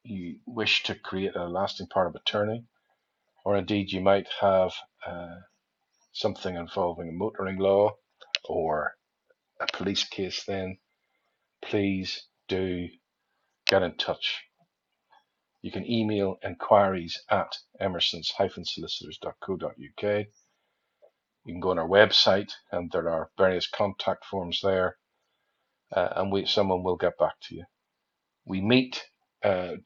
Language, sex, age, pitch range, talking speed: English, male, 50-69, 95-110 Hz, 125 wpm